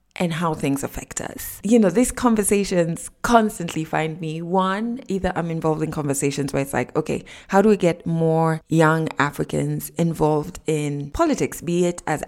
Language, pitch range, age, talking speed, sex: English, 155-210 Hz, 20-39, 170 wpm, female